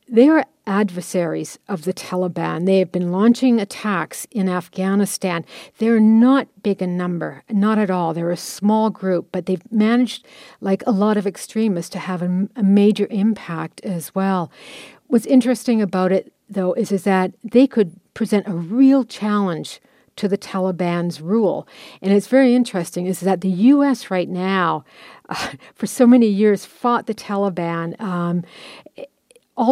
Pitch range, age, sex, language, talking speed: 185-225 Hz, 60-79, female, English, 160 wpm